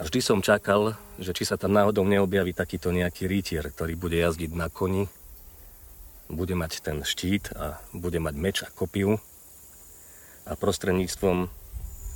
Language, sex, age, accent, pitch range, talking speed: Czech, male, 40-59, native, 80-95 Hz, 150 wpm